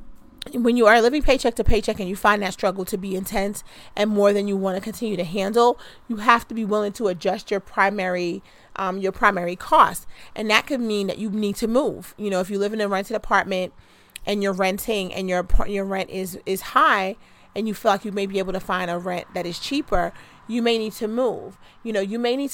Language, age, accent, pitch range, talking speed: English, 30-49, American, 190-225 Hz, 240 wpm